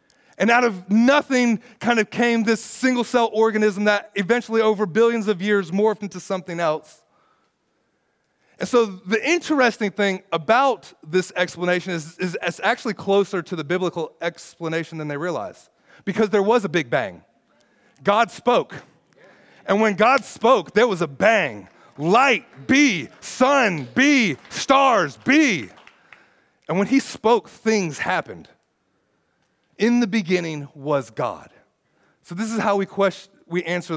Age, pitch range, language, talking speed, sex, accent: 30-49, 185-240 Hz, English, 145 wpm, male, American